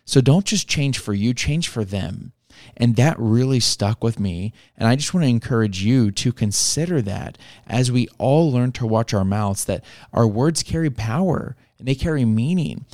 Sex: male